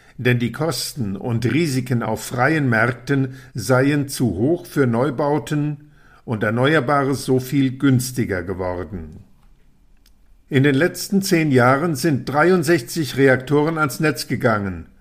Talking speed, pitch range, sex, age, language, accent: 120 wpm, 120-150 Hz, male, 50-69, German, German